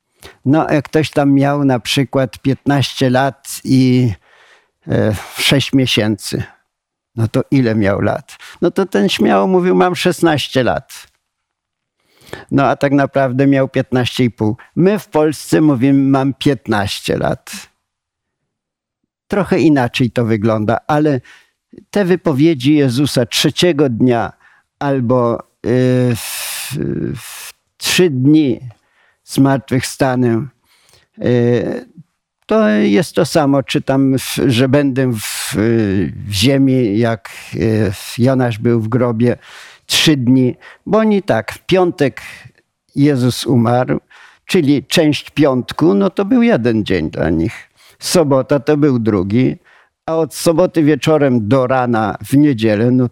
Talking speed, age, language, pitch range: 115 wpm, 50-69, Polish, 120-150 Hz